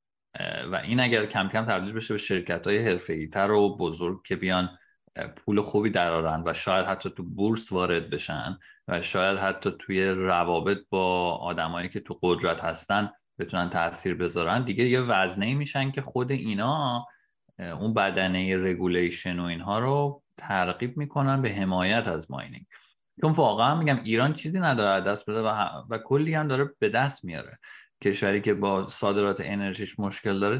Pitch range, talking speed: 90-120 Hz, 160 wpm